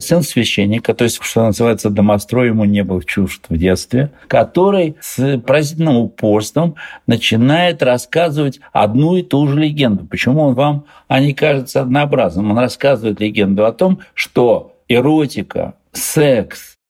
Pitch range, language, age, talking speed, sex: 105-150 Hz, Russian, 60-79, 135 wpm, male